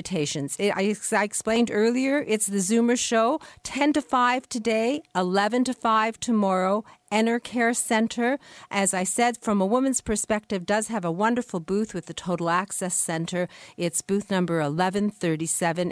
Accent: American